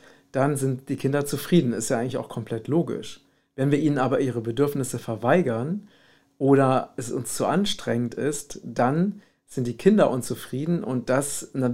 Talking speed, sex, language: 165 wpm, male, German